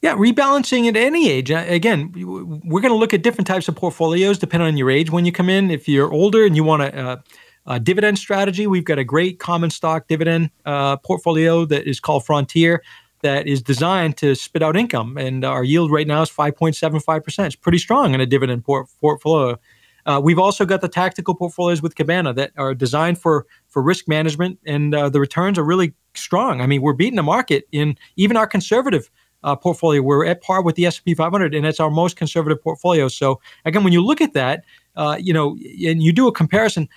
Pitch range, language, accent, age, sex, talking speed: 150-190 Hz, English, American, 40-59, male, 210 wpm